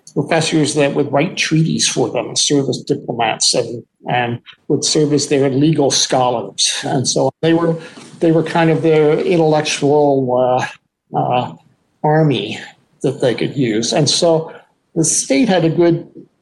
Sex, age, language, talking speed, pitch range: male, 50-69, English, 155 wpm, 140-165 Hz